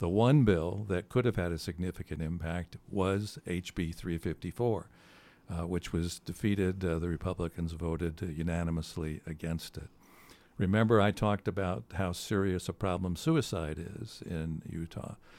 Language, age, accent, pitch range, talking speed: English, 60-79, American, 85-100 Hz, 140 wpm